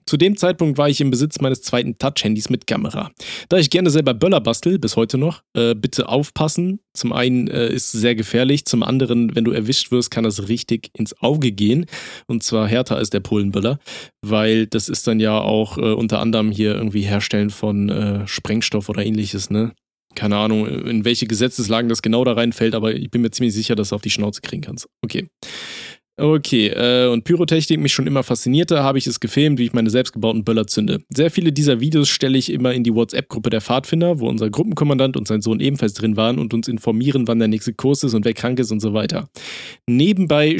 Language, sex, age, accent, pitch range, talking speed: German, male, 20-39, German, 110-145 Hz, 215 wpm